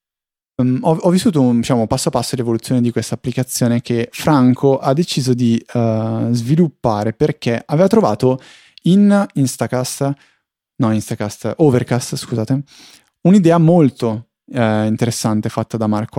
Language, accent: Italian, native